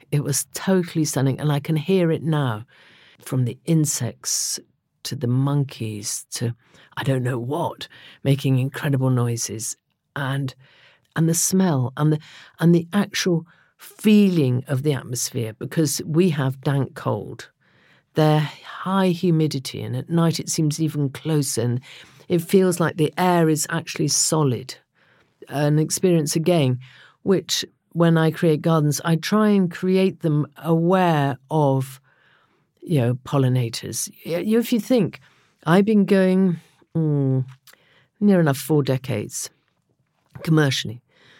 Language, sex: English, female